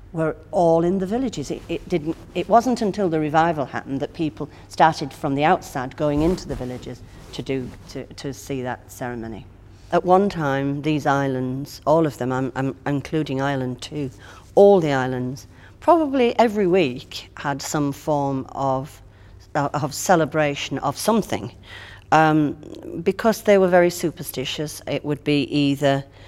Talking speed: 155 wpm